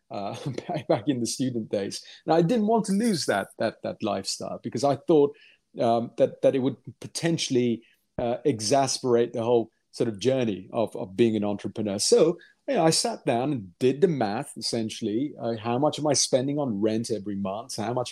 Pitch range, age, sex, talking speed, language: 115-145 Hz, 30-49, male, 200 wpm, English